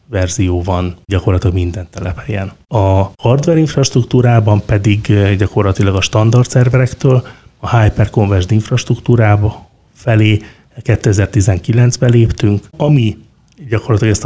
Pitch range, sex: 100-120 Hz, male